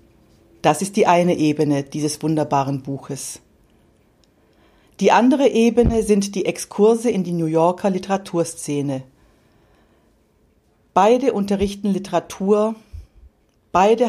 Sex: female